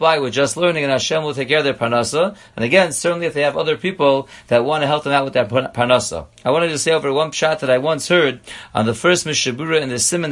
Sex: male